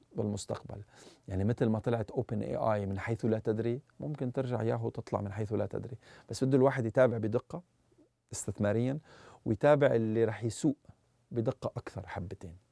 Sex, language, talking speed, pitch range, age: male, Arabic, 155 wpm, 105-130 Hz, 40-59